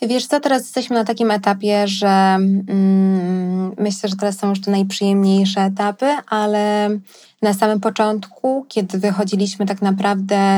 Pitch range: 195-220 Hz